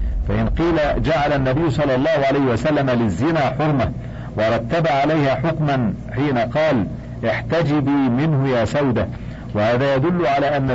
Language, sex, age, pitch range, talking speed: Arabic, male, 50-69, 120-145 Hz, 130 wpm